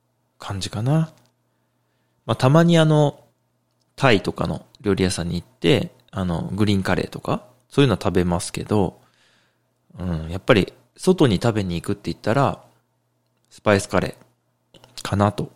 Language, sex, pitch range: Japanese, male, 90-135 Hz